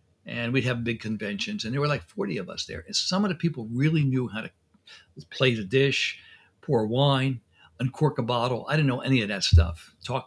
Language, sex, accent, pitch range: English, male, American, 110-135 Hz